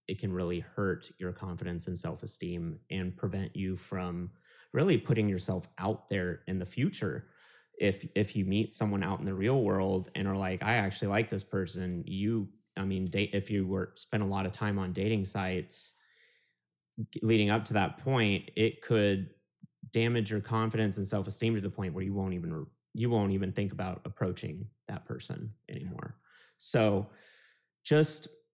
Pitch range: 95-115 Hz